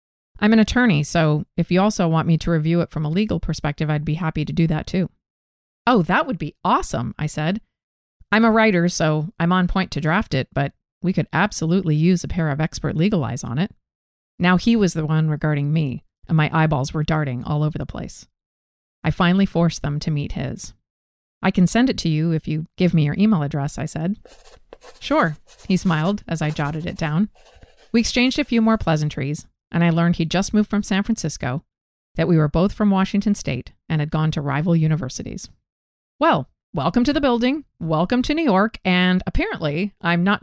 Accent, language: American, English